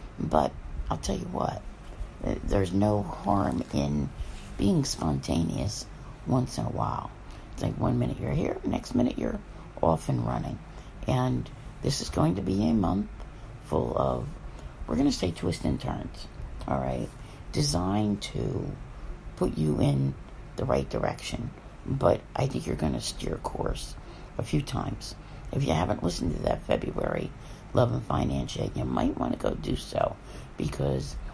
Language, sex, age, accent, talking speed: English, female, 60-79, American, 160 wpm